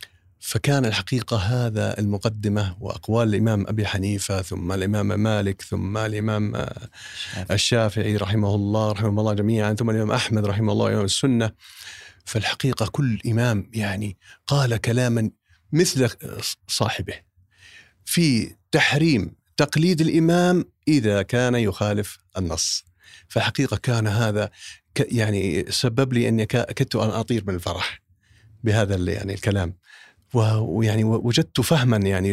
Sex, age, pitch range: male, 40-59, 100-120 Hz